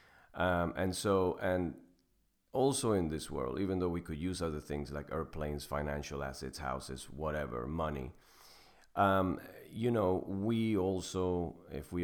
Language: English